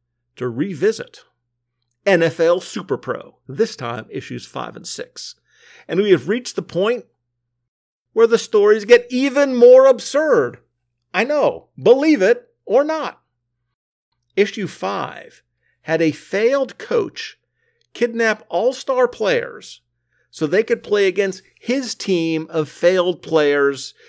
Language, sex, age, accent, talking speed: English, male, 50-69, American, 120 wpm